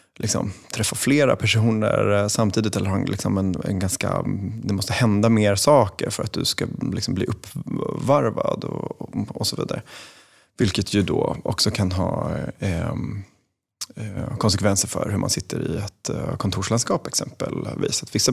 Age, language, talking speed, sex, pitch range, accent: 30-49, Swedish, 120 wpm, male, 100-115 Hz, native